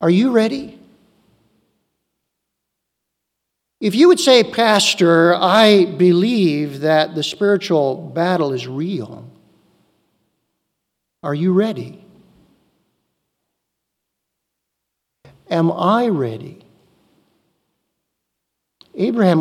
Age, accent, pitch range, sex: 60-79, American, 155-205 Hz, male